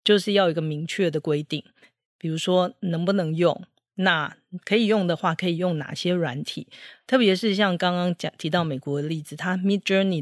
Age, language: 40-59, Chinese